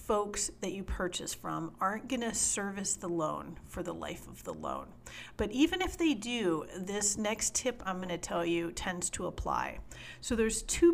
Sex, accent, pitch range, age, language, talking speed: female, American, 180-230 Hz, 40-59, English, 185 wpm